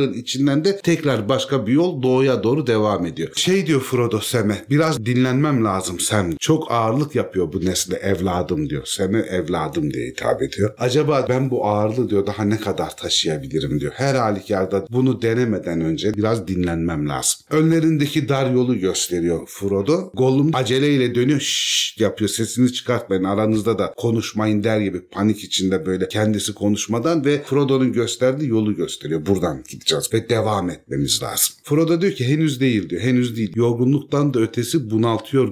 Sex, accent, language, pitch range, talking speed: male, native, Turkish, 100-130 Hz, 155 wpm